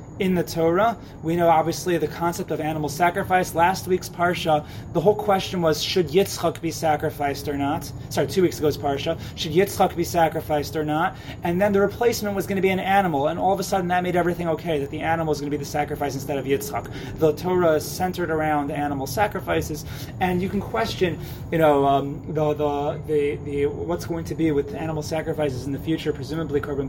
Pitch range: 140-170 Hz